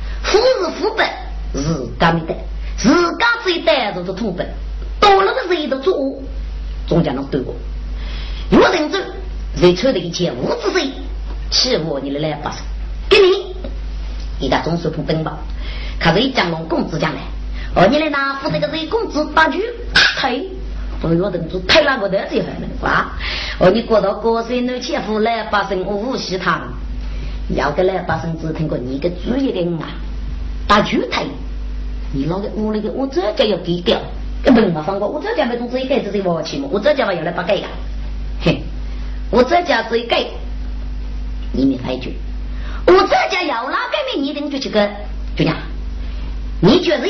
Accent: American